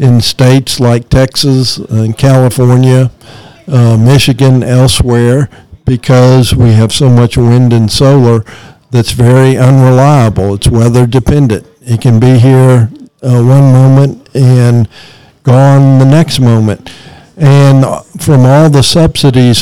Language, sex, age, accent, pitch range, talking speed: English, male, 50-69, American, 115-135 Hz, 120 wpm